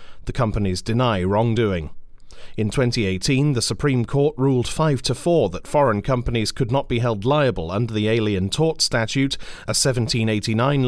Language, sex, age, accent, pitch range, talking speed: English, male, 30-49, British, 110-140 Hz, 145 wpm